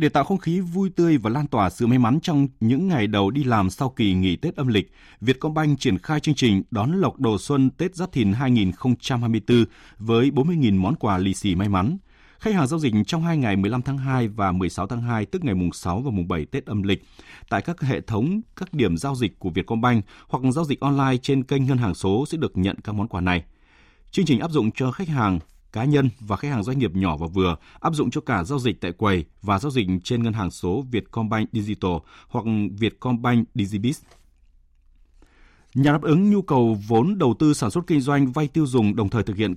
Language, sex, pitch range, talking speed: Vietnamese, male, 100-140 Hz, 230 wpm